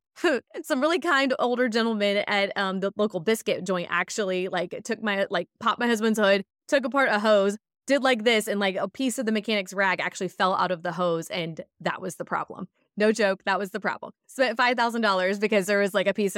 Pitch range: 190-230 Hz